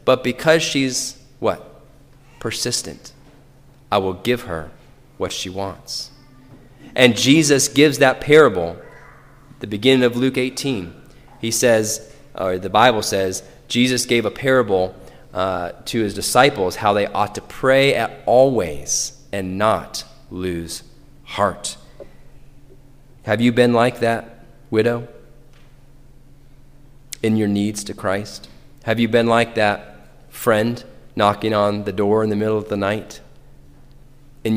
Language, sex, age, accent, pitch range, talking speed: English, male, 30-49, American, 105-135 Hz, 130 wpm